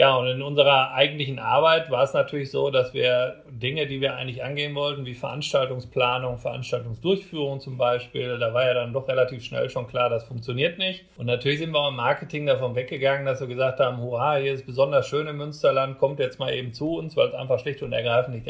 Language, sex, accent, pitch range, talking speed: German, male, German, 120-140 Hz, 220 wpm